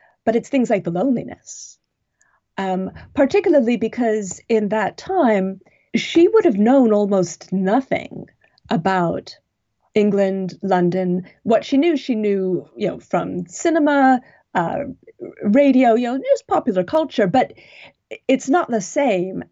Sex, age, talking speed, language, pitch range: female, 30-49, 130 wpm, English, 180-235 Hz